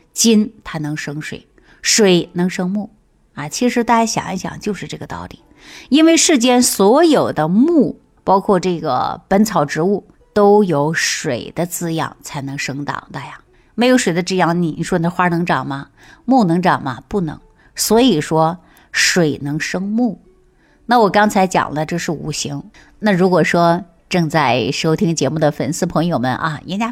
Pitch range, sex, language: 155-220 Hz, female, Chinese